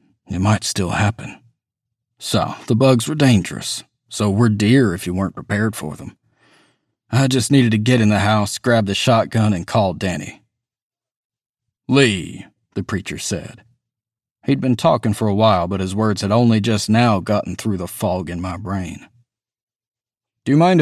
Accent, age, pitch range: American, 40-59, 100-125 Hz